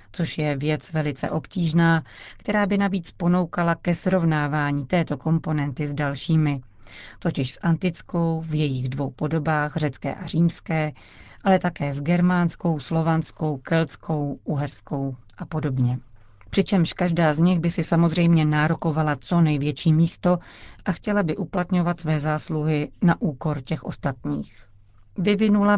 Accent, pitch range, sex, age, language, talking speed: native, 145-180 Hz, female, 40-59, Czech, 130 wpm